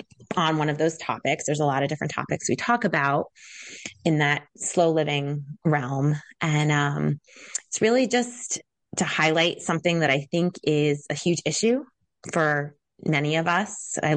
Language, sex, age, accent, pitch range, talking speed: English, female, 20-39, American, 150-185 Hz, 165 wpm